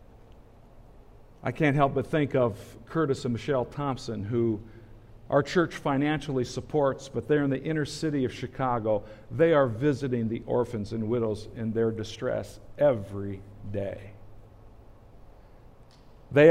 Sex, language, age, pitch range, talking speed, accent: male, English, 50-69, 110-145 Hz, 130 wpm, American